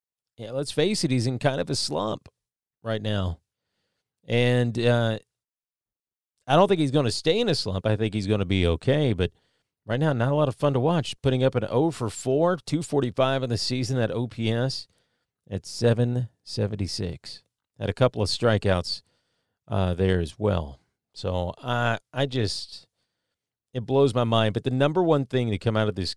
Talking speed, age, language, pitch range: 190 wpm, 40-59, English, 105-140 Hz